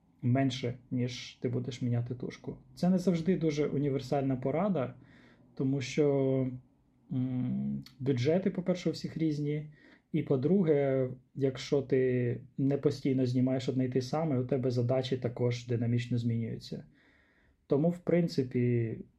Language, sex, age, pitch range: Ukrainian, male, 20-39, 125-145 Hz